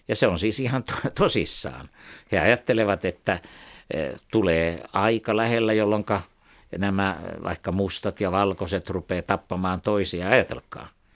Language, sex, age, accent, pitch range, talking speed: Finnish, male, 60-79, native, 90-120 Hz, 120 wpm